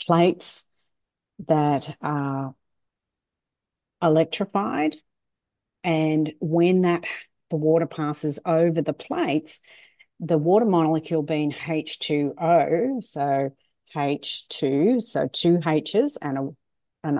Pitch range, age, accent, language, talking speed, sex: 145-165 Hz, 40-59, Australian, English, 85 wpm, female